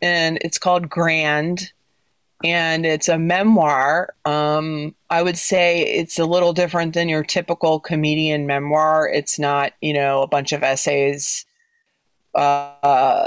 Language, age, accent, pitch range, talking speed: English, 30-49, American, 145-185 Hz, 135 wpm